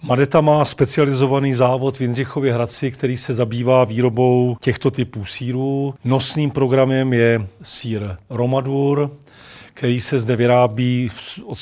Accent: native